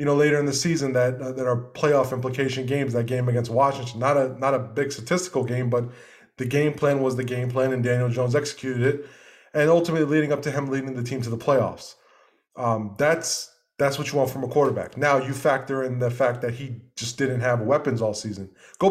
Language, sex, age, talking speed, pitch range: English, male, 20-39, 230 wpm, 125-145 Hz